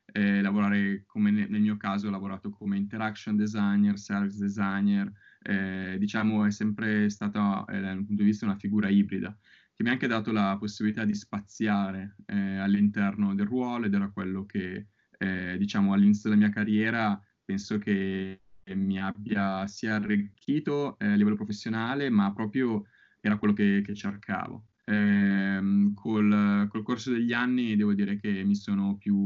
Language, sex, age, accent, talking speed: Italian, male, 20-39, native, 160 wpm